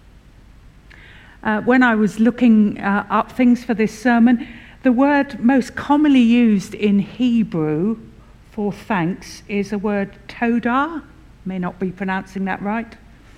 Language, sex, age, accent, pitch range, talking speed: English, female, 60-79, British, 175-230 Hz, 135 wpm